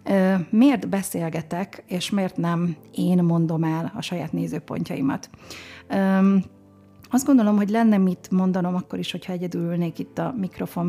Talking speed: 140 wpm